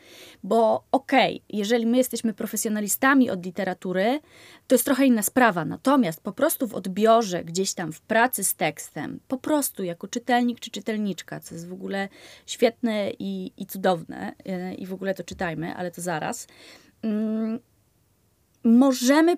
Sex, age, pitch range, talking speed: female, 20-39, 185-255 Hz, 155 wpm